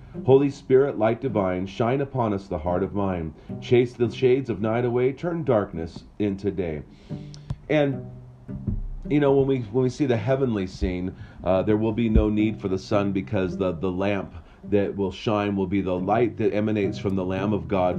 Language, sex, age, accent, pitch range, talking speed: English, male, 40-59, American, 100-130 Hz, 195 wpm